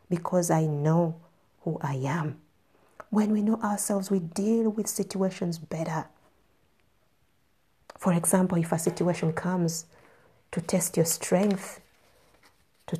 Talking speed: 120 wpm